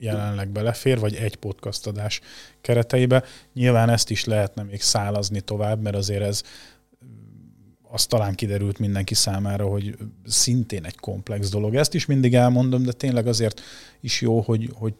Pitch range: 100-115 Hz